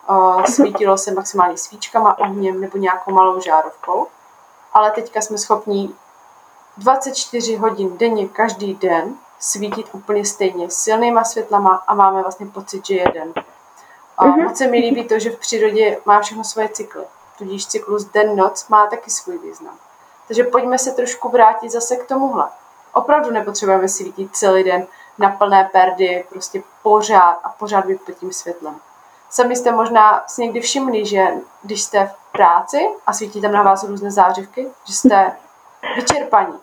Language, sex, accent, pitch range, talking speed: Czech, female, native, 195-250 Hz, 155 wpm